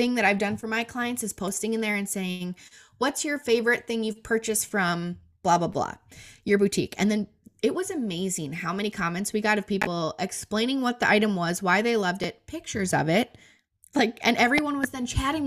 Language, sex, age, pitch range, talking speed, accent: English, female, 20-39, 180-240 Hz, 210 wpm, American